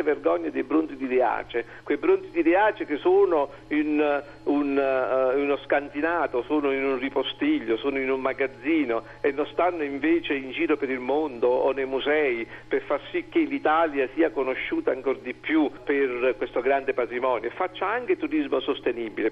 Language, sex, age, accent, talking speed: Italian, male, 50-69, native, 170 wpm